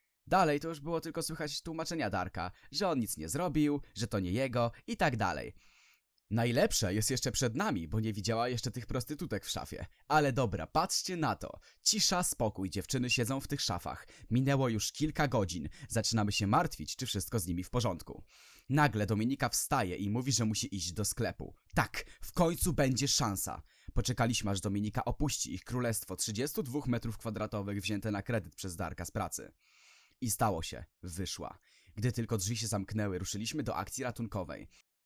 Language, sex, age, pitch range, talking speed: Polish, male, 20-39, 105-145 Hz, 175 wpm